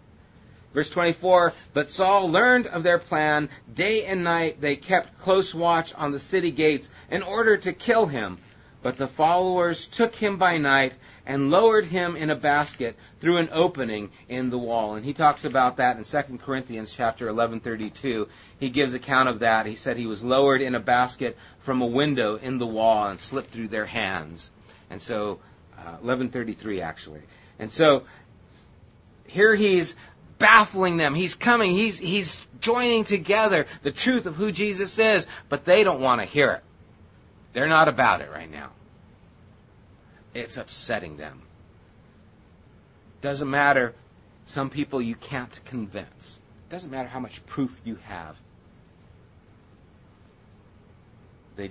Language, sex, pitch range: English, male, 100-155 Hz